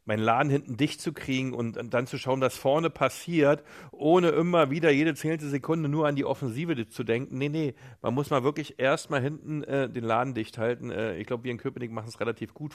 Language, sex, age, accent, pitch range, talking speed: German, male, 40-59, German, 110-140 Hz, 225 wpm